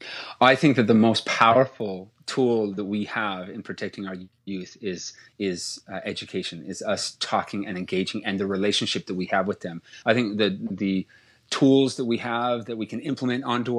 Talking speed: 190 wpm